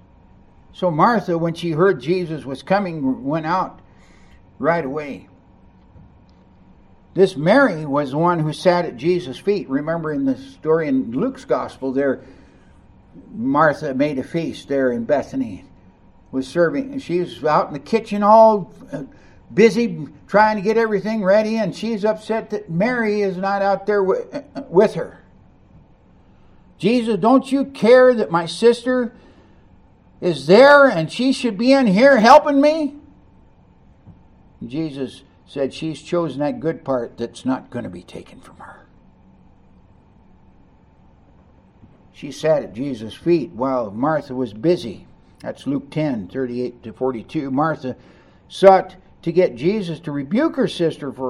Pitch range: 130-210 Hz